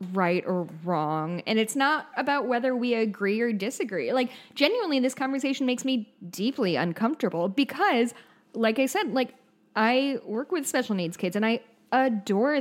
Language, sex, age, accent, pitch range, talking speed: English, female, 10-29, American, 180-250 Hz, 160 wpm